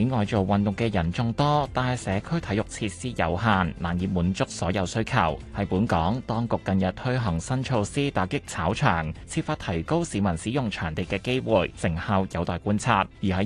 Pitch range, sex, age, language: 95-125 Hz, male, 30-49, Chinese